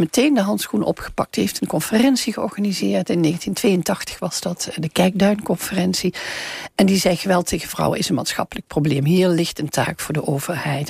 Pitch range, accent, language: 175-230 Hz, Dutch, Dutch